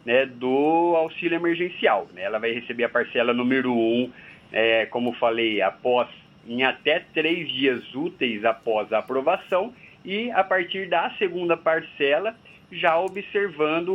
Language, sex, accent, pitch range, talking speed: Portuguese, male, Brazilian, 125-175 Hz, 140 wpm